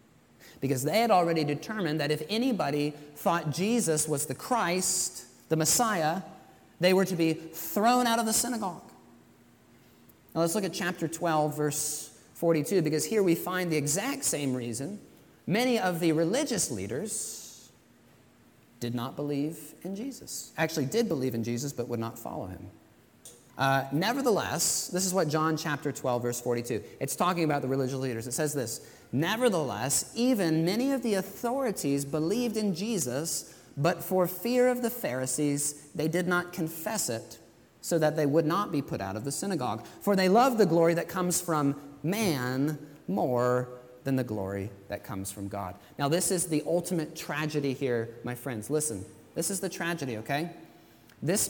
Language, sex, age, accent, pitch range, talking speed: English, male, 30-49, American, 135-185 Hz, 165 wpm